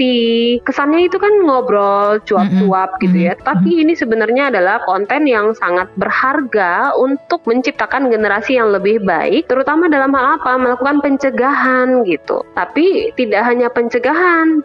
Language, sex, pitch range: Indonesian, female, 180-250 Hz